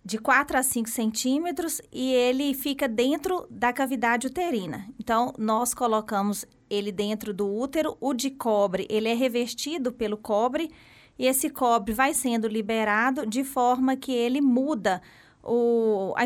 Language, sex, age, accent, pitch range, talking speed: Portuguese, female, 20-39, Brazilian, 225-275 Hz, 150 wpm